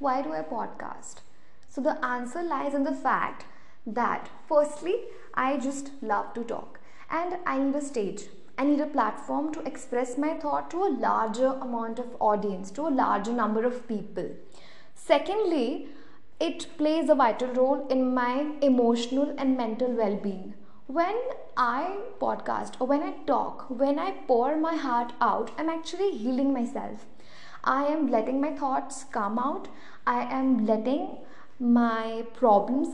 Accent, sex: native, female